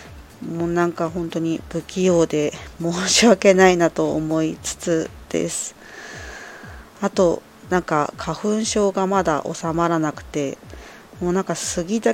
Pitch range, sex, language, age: 150-180 Hz, female, Japanese, 20-39